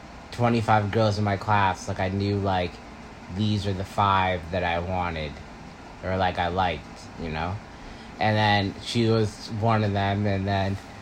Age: 20-39